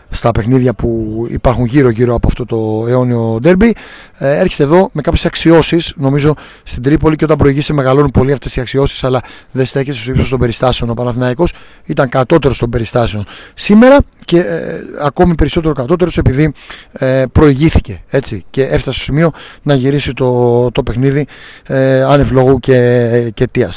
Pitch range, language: 125-150 Hz, Greek